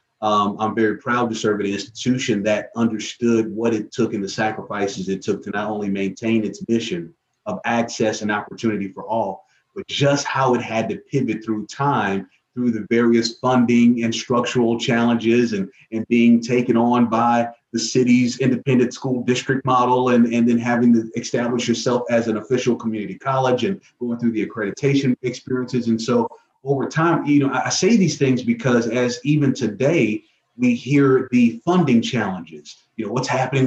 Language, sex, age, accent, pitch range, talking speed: English, male, 30-49, American, 115-130 Hz, 175 wpm